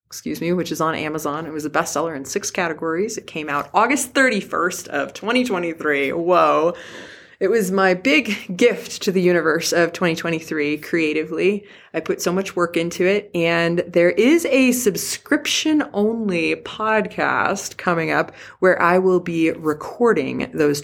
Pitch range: 155-205 Hz